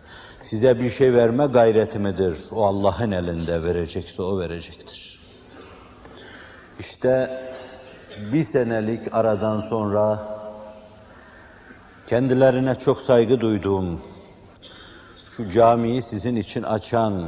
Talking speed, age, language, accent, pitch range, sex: 90 wpm, 60-79, Turkish, native, 95-120 Hz, male